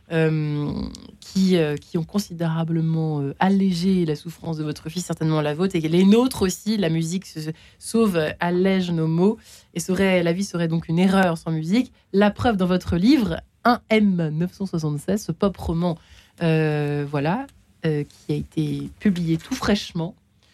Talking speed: 160 wpm